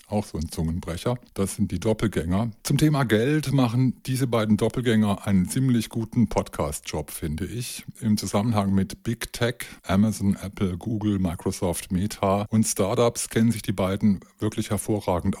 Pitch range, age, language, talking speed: 90-115 Hz, 50-69, German, 150 wpm